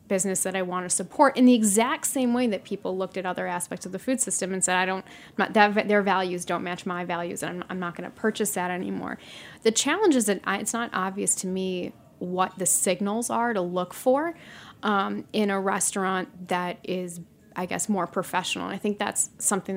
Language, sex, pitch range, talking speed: English, female, 180-200 Hz, 220 wpm